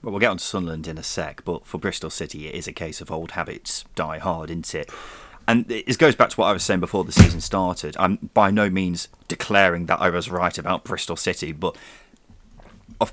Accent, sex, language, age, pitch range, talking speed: British, male, English, 30-49, 90-135 Hz, 235 wpm